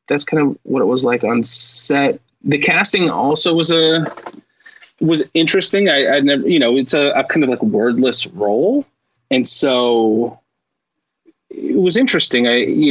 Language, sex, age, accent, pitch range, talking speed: English, male, 30-49, American, 125-210 Hz, 165 wpm